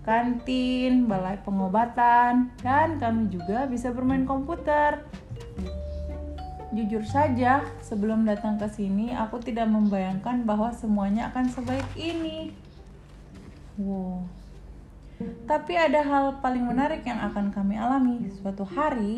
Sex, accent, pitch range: female, native, 190-260 Hz